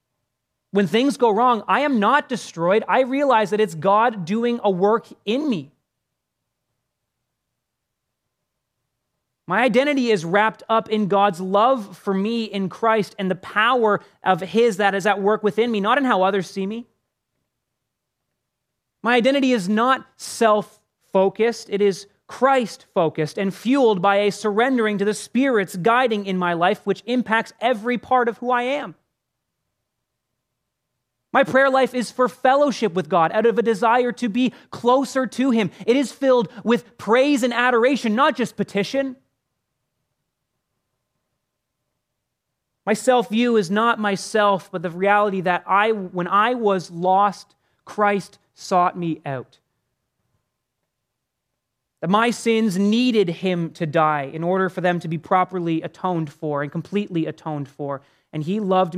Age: 30-49